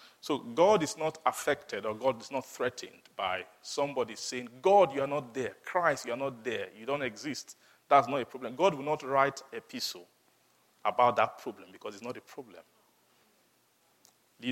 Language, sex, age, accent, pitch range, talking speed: English, male, 40-59, Nigerian, 125-155 Hz, 180 wpm